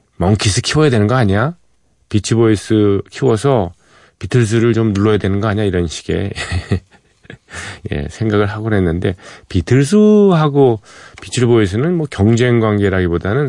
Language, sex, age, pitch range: Korean, male, 40-59, 95-120 Hz